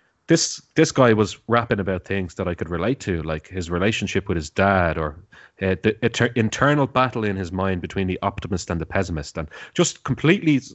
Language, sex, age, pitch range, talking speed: English, male, 30-49, 90-115 Hz, 200 wpm